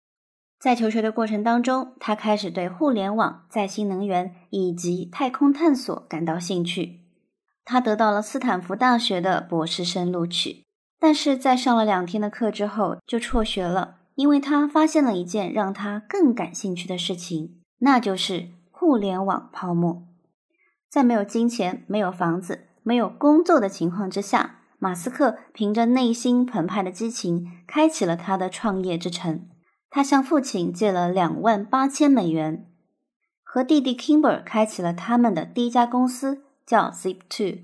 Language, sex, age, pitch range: Chinese, male, 20-39, 180-250 Hz